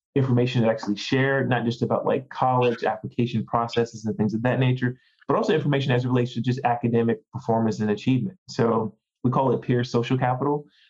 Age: 20-39